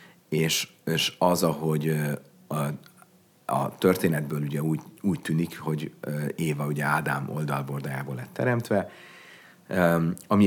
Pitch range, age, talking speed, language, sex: 75-90 Hz, 40-59, 110 wpm, Hungarian, male